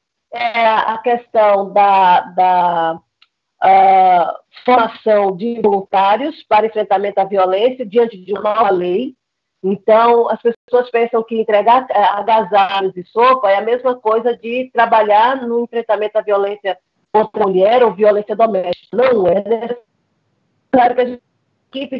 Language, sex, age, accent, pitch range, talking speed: Portuguese, female, 50-69, Brazilian, 205-245 Hz, 140 wpm